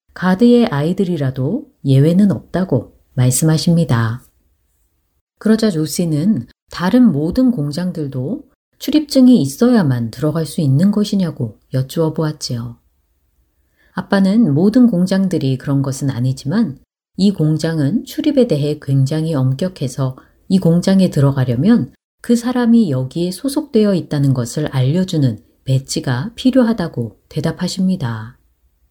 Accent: native